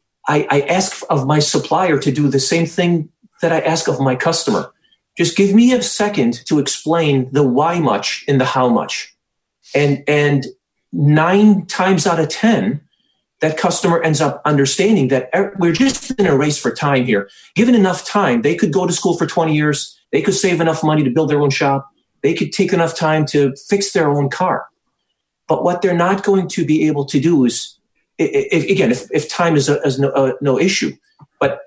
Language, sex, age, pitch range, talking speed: English, male, 40-59, 135-180 Hz, 205 wpm